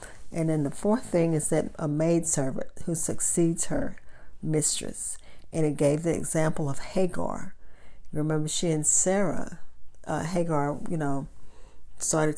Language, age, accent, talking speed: English, 40-59, American, 145 wpm